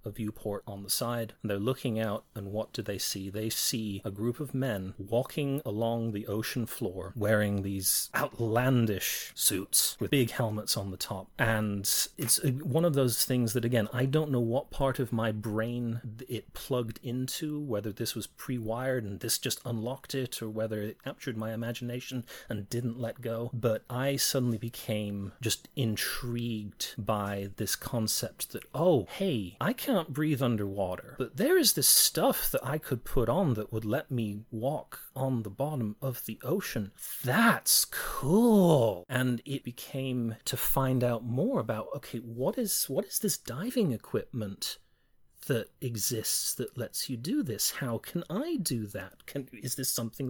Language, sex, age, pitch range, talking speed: English, male, 30-49, 110-140 Hz, 170 wpm